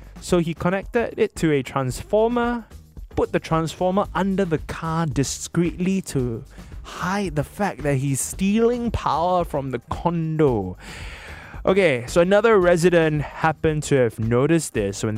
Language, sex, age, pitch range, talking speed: English, male, 20-39, 140-200 Hz, 140 wpm